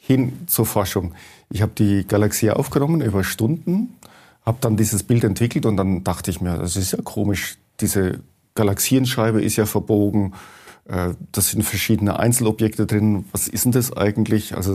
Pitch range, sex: 100-120 Hz, male